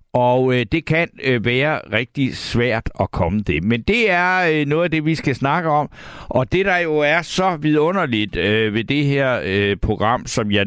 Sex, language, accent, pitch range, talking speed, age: male, Danish, native, 110-150 Hz, 210 wpm, 60-79